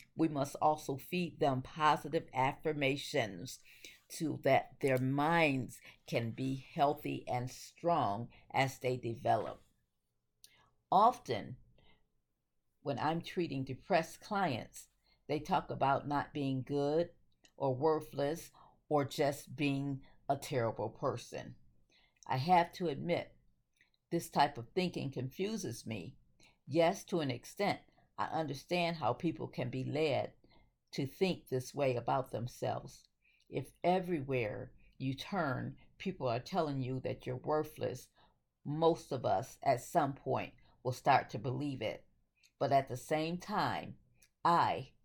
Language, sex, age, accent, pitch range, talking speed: English, female, 50-69, American, 125-155 Hz, 125 wpm